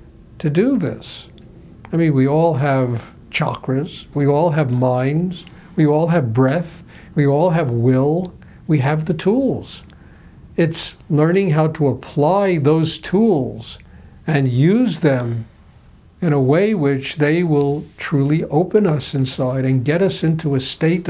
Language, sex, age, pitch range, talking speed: English, male, 60-79, 130-175 Hz, 145 wpm